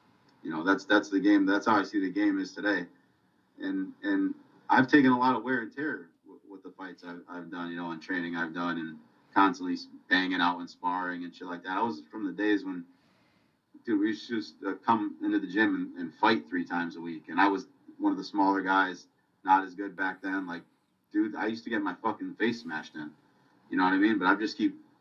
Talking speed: 240 wpm